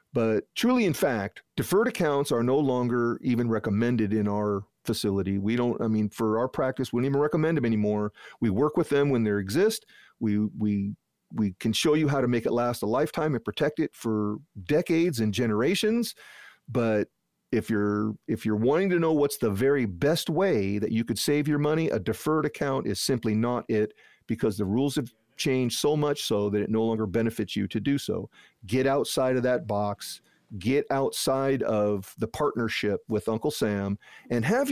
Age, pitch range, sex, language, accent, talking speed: 40-59, 110-145 Hz, male, English, American, 195 wpm